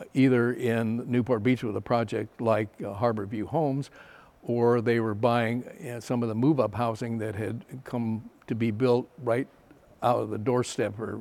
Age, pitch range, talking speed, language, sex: 60-79, 110-125 Hz, 185 wpm, English, male